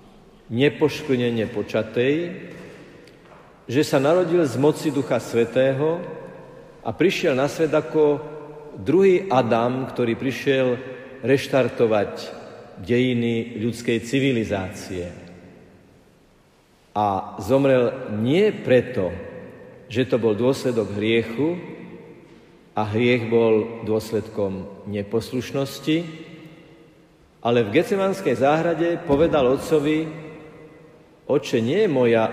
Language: Slovak